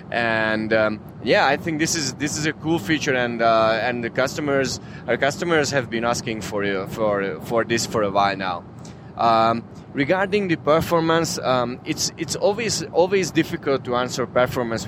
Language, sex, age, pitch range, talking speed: English, male, 20-39, 115-145 Hz, 180 wpm